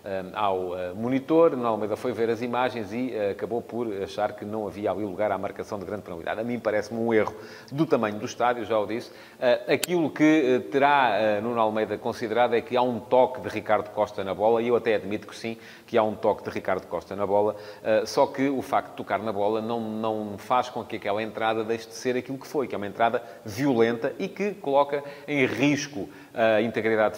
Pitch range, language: 105-130 Hz, English